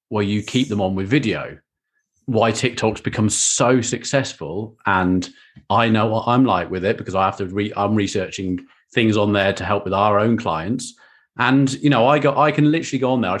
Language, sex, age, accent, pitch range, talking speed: English, male, 30-49, British, 100-135 Hz, 215 wpm